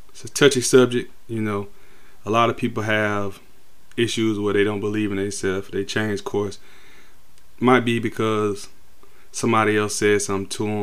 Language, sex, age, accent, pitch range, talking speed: English, male, 20-39, American, 100-125 Hz, 155 wpm